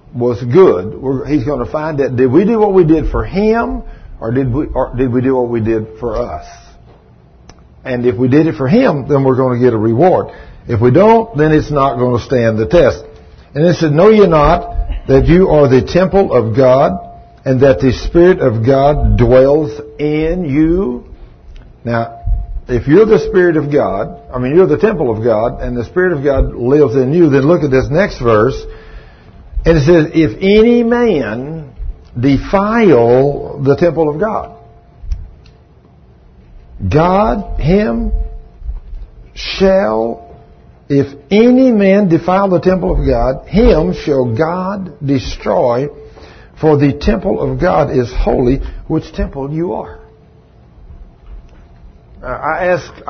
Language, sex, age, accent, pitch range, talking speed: English, male, 60-79, American, 110-165 Hz, 160 wpm